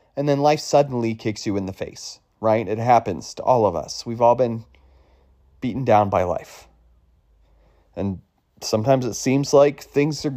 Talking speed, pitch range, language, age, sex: 175 wpm, 100-140 Hz, English, 30-49, male